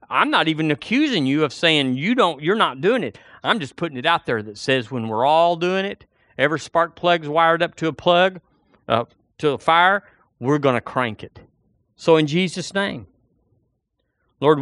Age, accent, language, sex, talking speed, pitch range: 50-69, American, English, male, 195 wpm, 120-170 Hz